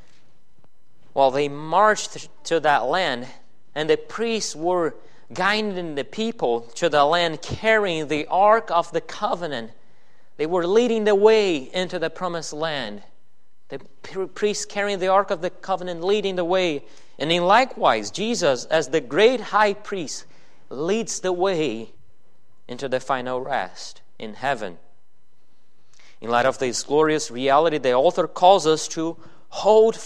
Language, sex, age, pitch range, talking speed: English, male, 30-49, 150-200 Hz, 145 wpm